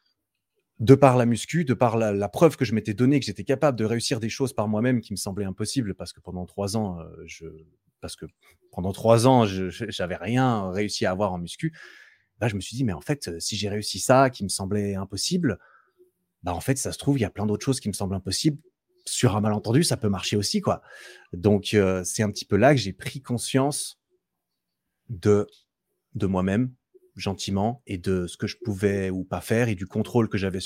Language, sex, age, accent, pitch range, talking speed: French, male, 30-49, French, 95-135 Hz, 225 wpm